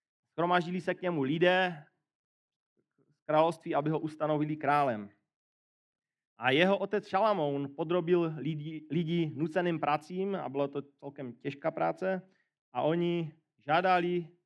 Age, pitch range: 40-59, 145-175 Hz